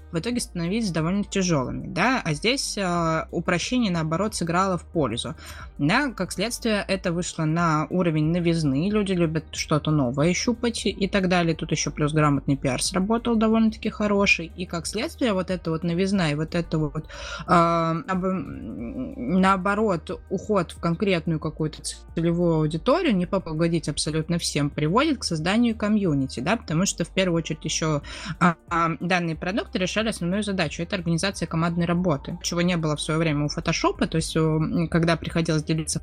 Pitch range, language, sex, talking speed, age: 150-185 Hz, Russian, female, 160 wpm, 20-39